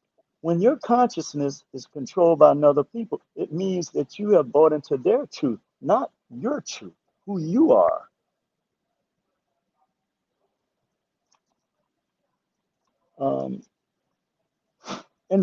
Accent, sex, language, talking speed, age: American, male, English, 95 wpm, 50-69